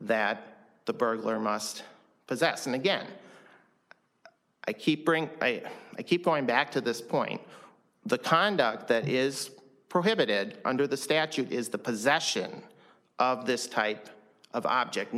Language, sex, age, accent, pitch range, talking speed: English, male, 40-59, American, 115-140 Hz, 125 wpm